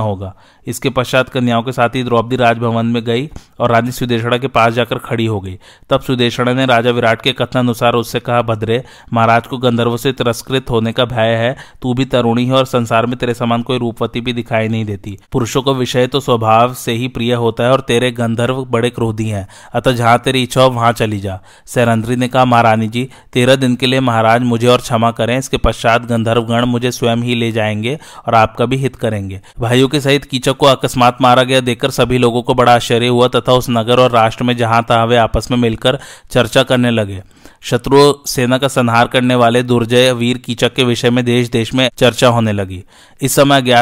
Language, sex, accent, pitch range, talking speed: Hindi, male, native, 115-130 Hz, 90 wpm